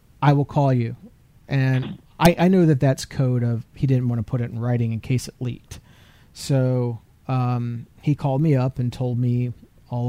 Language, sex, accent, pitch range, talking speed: English, male, American, 120-130 Hz, 200 wpm